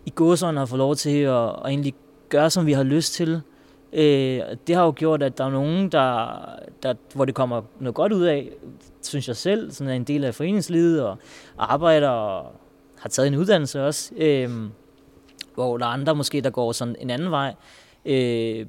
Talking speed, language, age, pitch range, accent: 200 wpm, Danish, 20-39, 125-155 Hz, native